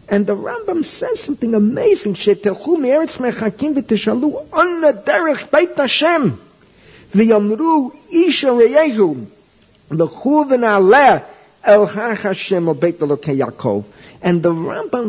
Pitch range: 170-255 Hz